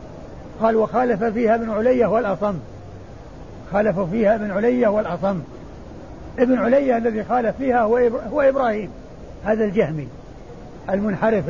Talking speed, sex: 110 wpm, male